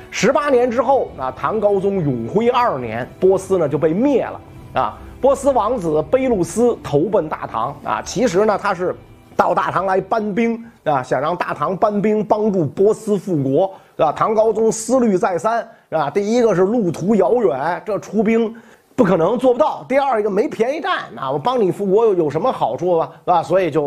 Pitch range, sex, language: 145-215 Hz, male, Chinese